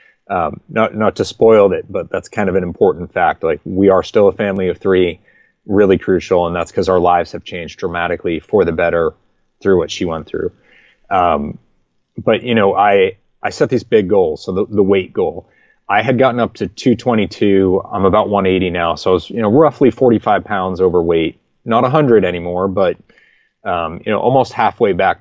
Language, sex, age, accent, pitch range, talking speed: English, male, 30-49, American, 90-115 Hz, 210 wpm